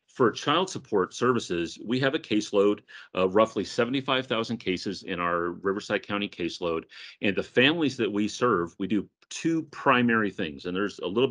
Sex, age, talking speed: male, 40-59, 170 wpm